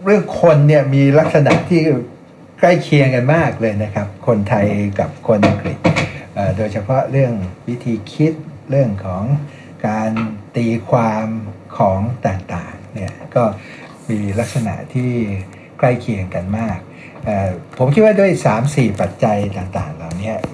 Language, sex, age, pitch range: Thai, male, 60-79, 100-135 Hz